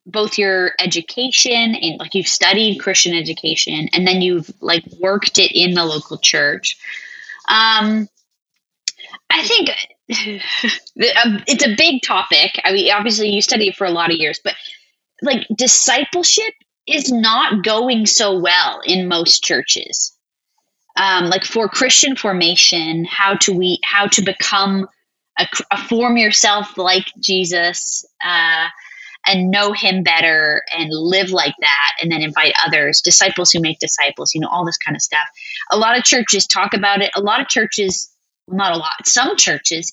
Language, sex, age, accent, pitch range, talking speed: English, female, 20-39, American, 175-230 Hz, 160 wpm